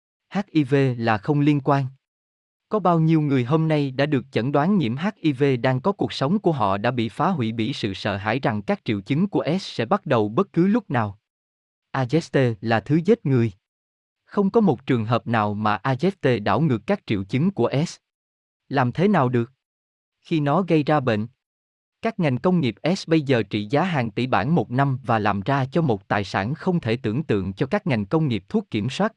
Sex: male